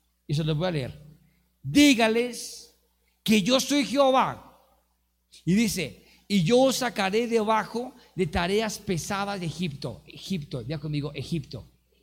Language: Spanish